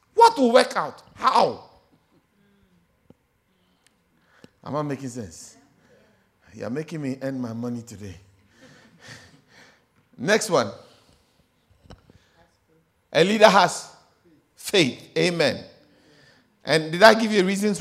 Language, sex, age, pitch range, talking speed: English, male, 50-69, 135-225 Hz, 100 wpm